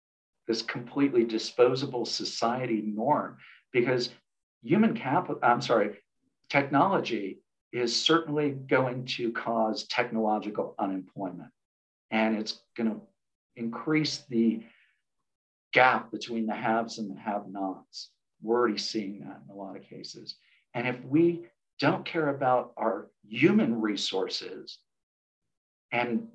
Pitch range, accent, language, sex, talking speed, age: 110-130 Hz, American, English, male, 110 wpm, 50-69